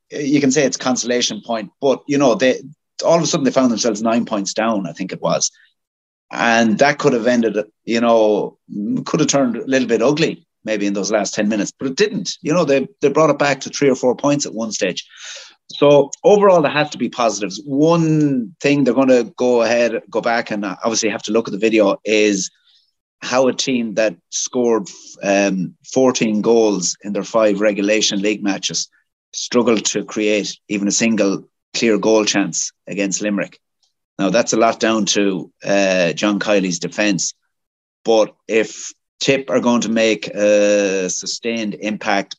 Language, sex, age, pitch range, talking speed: English, male, 30-49, 100-125 Hz, 185 wpm